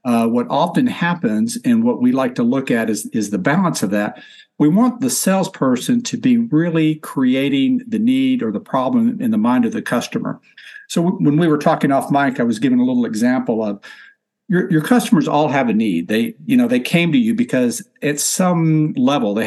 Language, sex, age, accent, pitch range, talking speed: English, male, 60-79, American, 150-250 Hz, 215 wpm